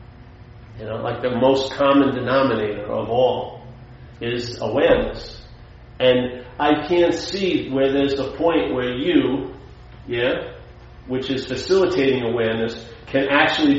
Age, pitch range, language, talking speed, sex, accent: 40-59, 120-145 Hz, English, 125 wpm, male, American